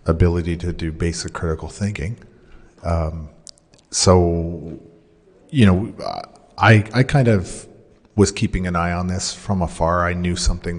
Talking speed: 140 wpm